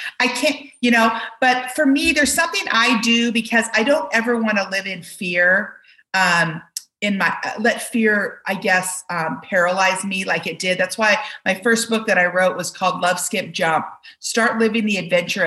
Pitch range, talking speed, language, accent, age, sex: 180-230 Hz, 195 wpm, English, American, 40-59, female